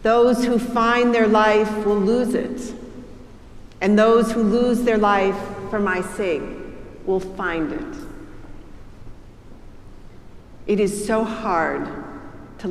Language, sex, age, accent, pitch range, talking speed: English, female, 50-69, American, 185-230 Hz, 120 wpm